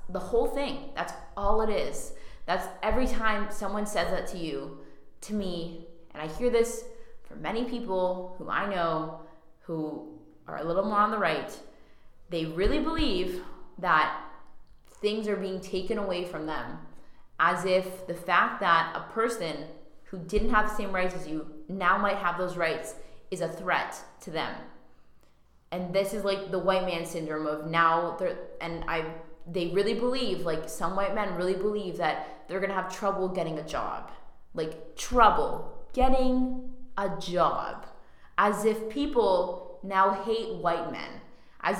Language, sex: English, female